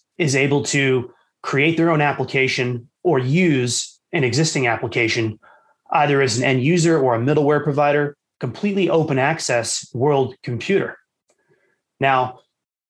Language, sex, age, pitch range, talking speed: English, male, 30-49, 125-160 Hz, 125 wpm